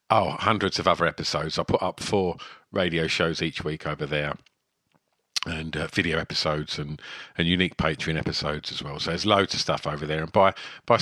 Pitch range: 80-105 Hz